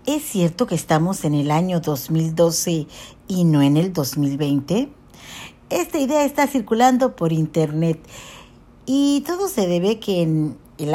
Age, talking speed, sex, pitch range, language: 50-69, 140 wpm, female, 165-255 Hz, Spanish